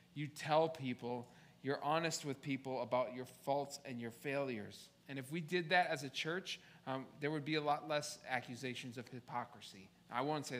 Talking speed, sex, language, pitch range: 190 wpm, male, English, 125-150 Hz